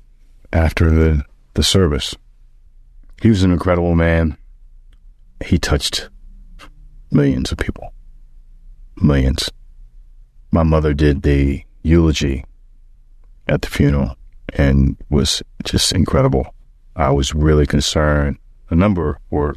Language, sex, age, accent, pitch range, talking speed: English, male, 30-49, American, 65-85 Hz, 105 wpm